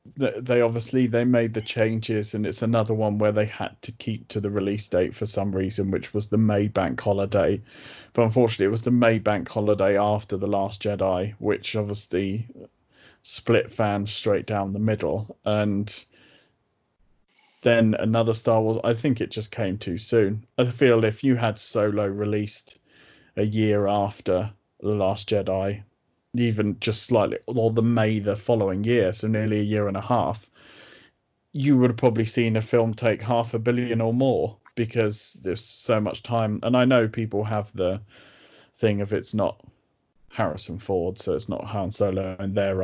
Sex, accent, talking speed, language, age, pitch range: male, British, 175 wpm, English, 30-49, 105-115 Hz